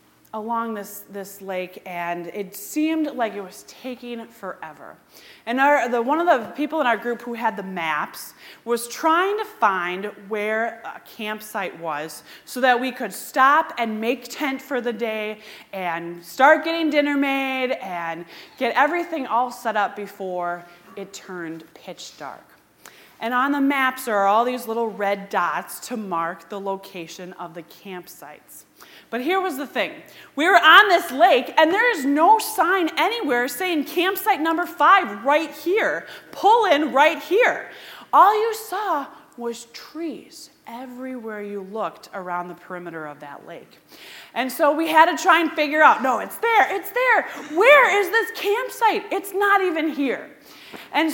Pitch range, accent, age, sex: 205-315 Hz, American, 30-49, female